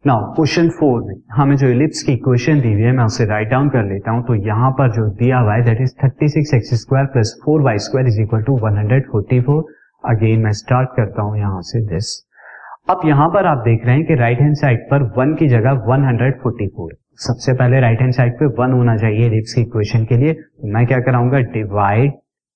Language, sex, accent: Hindi, male, native